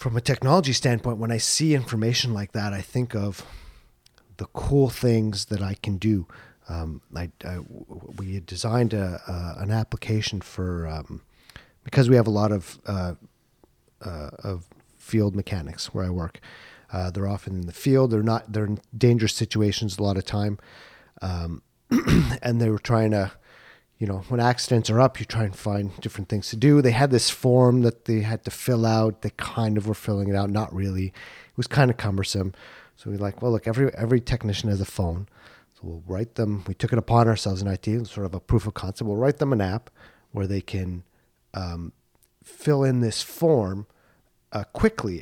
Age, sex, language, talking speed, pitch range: 40-59, male, English, 200 wpm, 95-120 Hz